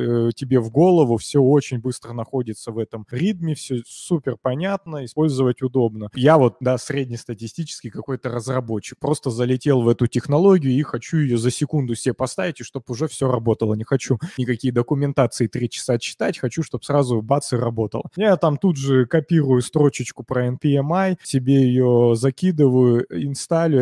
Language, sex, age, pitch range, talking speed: Russian, male, 20-39, 120-150 Hz, 160 wpm